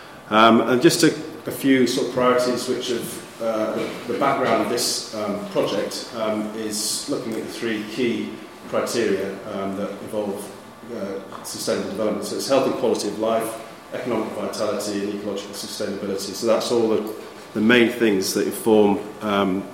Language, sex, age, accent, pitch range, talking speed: English, male, 30-49, British, 100-115 Hz, 165 wpm